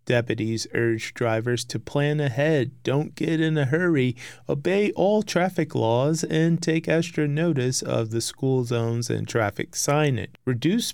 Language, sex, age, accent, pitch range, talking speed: English, male, 30-49, American, 120-150 Hz, 150 wpm